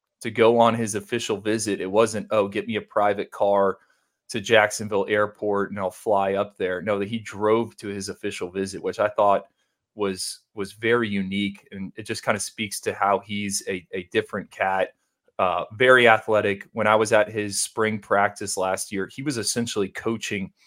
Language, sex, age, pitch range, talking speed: English, male, 30-49, 95-110 Hz, 190 wpm